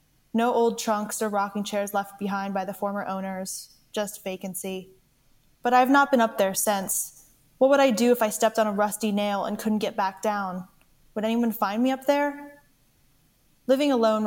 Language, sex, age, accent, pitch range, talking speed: English, female, 20-39, American, 195-225 Hz, 190 wpm